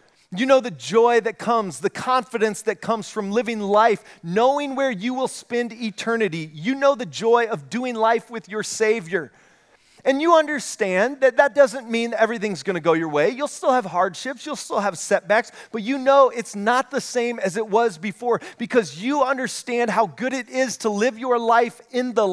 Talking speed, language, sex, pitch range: 195 wpm, English, male, 180-235 Hz